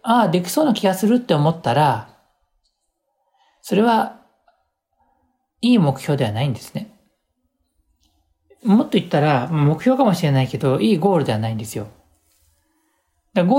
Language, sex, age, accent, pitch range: Japanese, male, 40-59, native, 120-185 Hz